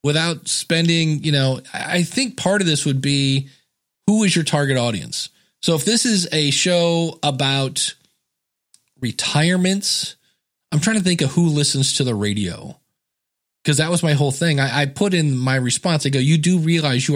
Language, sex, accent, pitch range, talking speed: English, male, American, 130-165 Hz, 180 wpm